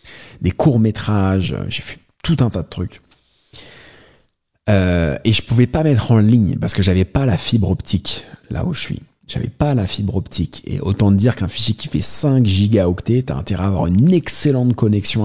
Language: English